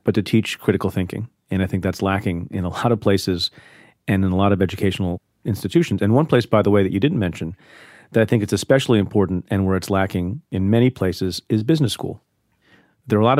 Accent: American